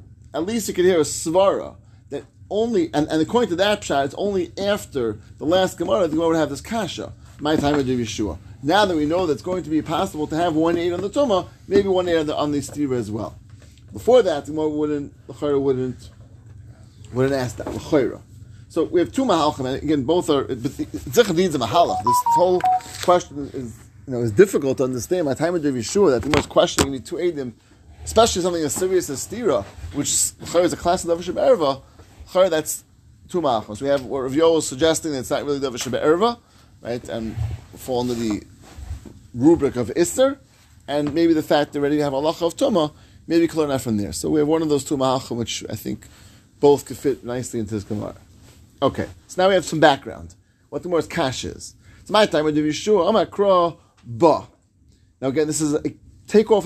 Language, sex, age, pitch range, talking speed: English, male, 30-49, 110-170 Hz, 215 wpm